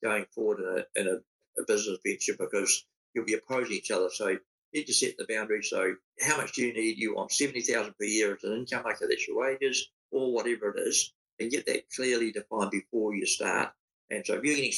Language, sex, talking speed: English, male, 230 wpm